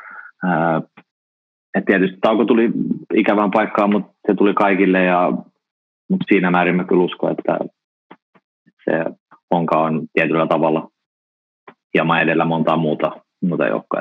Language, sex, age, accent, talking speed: Finnish, male, 30-49, native, 120 wpm